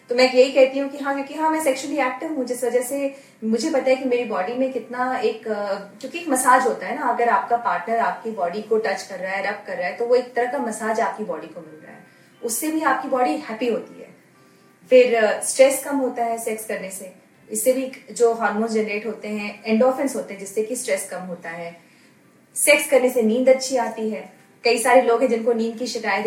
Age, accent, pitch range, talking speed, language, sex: 30-49, native, 220-260 Hz, 240 wpm, Hindi, female